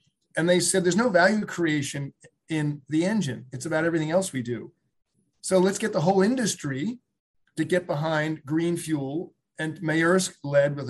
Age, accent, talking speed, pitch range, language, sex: 40-59, American, 170 wpm, 135-180 Hz, English, male